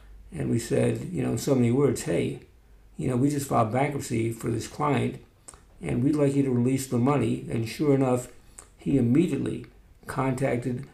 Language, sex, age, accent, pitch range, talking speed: English, male, 60-79, American, 120-140 Hz, 180 wpm